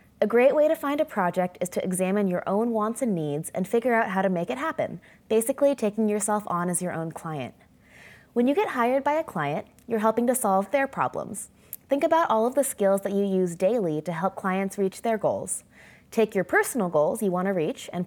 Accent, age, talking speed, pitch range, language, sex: American, 20-39, 230 wpm, 180-240 Hz, English, female